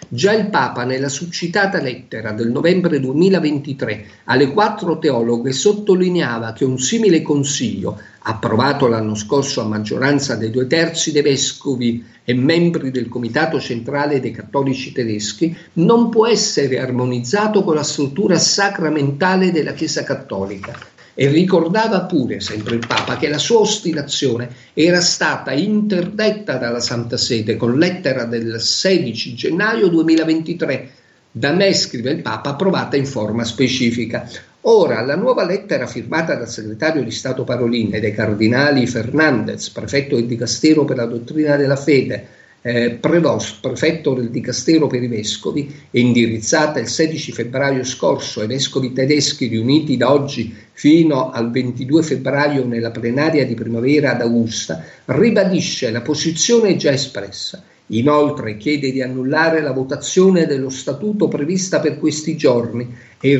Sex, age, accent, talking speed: male, 50-69, native, 140 wpm